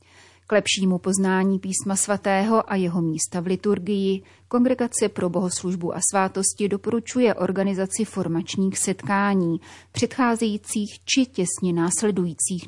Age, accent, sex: 30-49, native, female